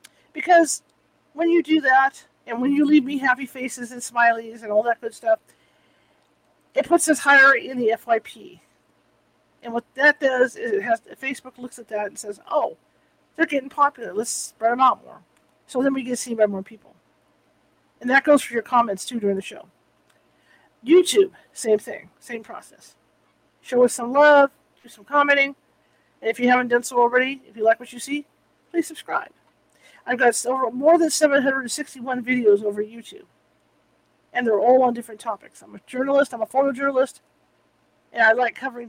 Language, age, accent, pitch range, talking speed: English, 50-69, American, 235-290 Hz, 175 wpm